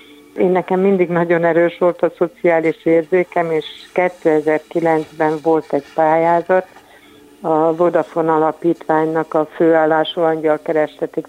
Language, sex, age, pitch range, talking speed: Hungarian, female, 60-79, 155-170 Hz, 105 wpm